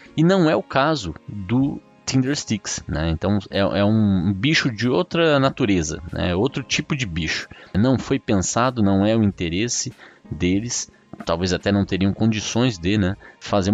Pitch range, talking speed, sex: 85-115 Hz, 165 wpm, male